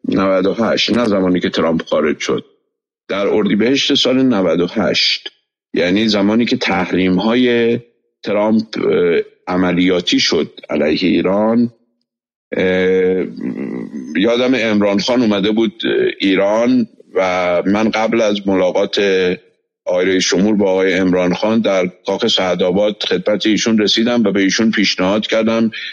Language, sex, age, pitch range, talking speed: Persian, male, 50-69, 100-140 Hz, 115 wpm